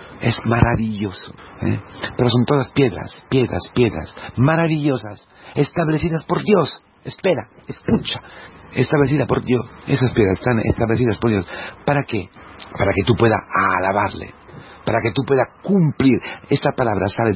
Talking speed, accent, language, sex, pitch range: 130 wpm, Mexican, Spanish, male, 95-130 Hz